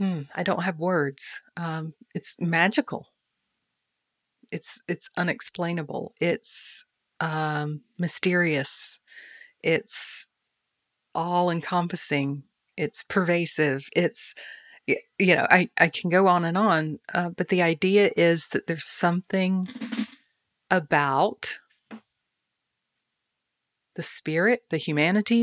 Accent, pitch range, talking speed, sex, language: American, 160-195 Hz, 95 wpm, female, English